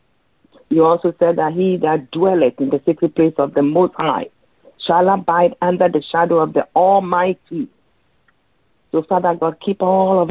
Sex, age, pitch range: female, 50-69, 155-195 Hz